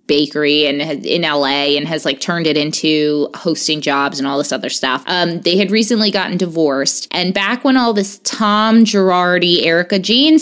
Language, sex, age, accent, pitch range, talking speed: English, female, 20-39, American, 170-210 Hz, 185 wpm